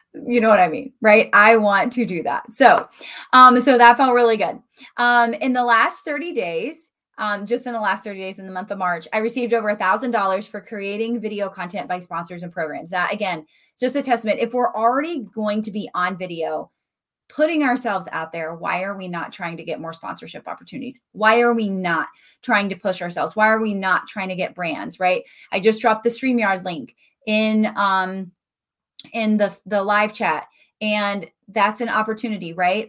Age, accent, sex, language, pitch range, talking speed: 20-39, American, female, English, 185-235 Hz, 205 wpm